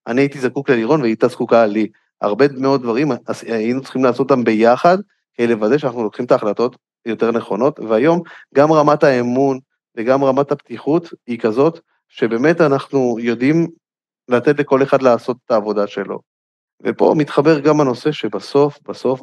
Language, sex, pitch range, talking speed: Hebrew, male, 110-135 Hz, 150 wpm